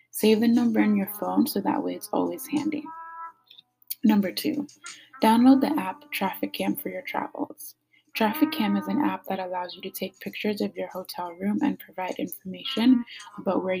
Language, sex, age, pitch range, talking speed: English, female, 20-39, 185-295 Hz, 185 wpm